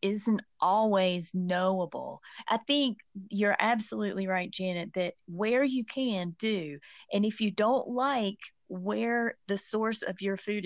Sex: female